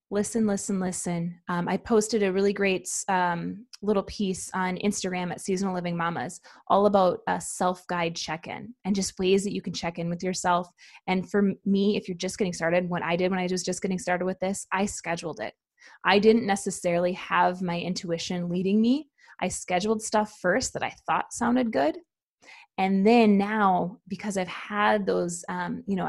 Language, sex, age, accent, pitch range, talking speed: English, female, 20-39, American, 180-210 Hz, 190 wpm